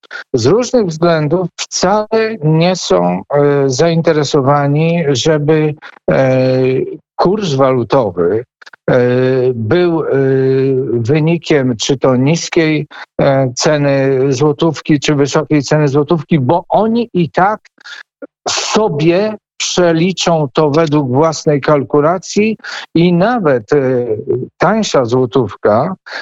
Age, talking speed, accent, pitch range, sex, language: 50-69, 80 wpm, native, 135-175 Hz, male, Polish